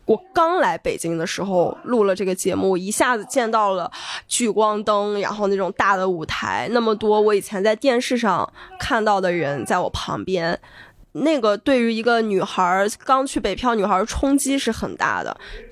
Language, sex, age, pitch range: Chinese, female, 10-29, 195-245 Hz